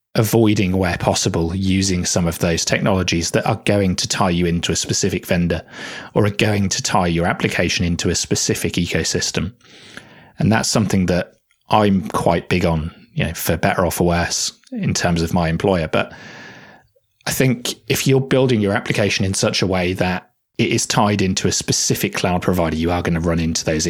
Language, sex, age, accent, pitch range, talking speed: English, male, 30-49, British, 85-105 Hz, 195 wpm